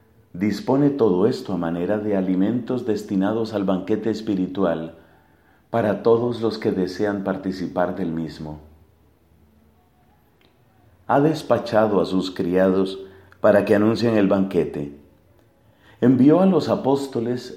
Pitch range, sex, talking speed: 95-120 Hz, male, 115 wpm